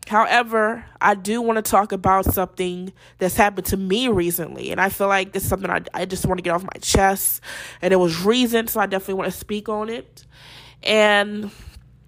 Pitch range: 175-220 Hz